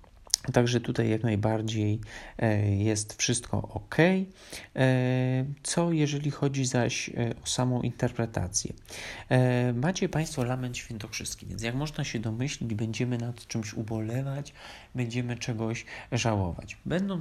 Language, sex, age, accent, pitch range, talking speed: Polish, male, 40-59, native, 105-130 Hz, 110 wpm